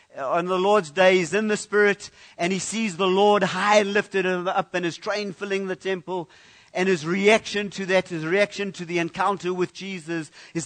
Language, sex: English, male